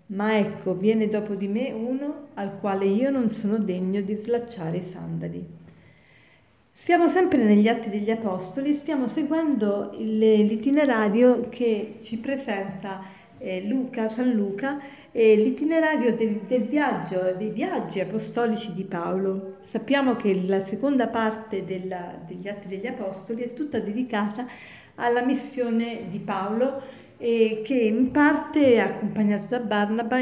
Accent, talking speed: native, 130 wpm